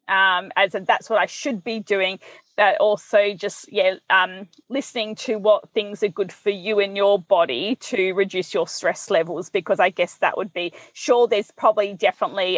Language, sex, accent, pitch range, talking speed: English, female, Australian, 190-235 Hz, 190 wpm